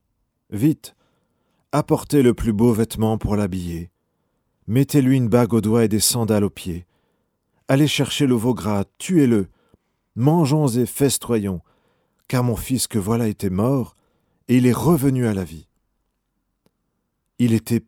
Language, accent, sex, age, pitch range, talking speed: French, French, male, 40-59, 105-140 Hz, 145 wpm